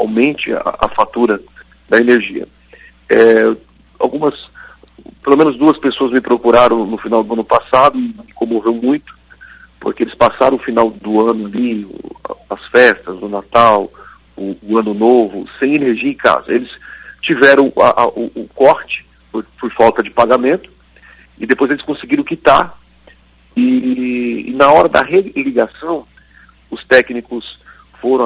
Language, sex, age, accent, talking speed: Portuguese, male, 40-59, Brazilian, 140 wpm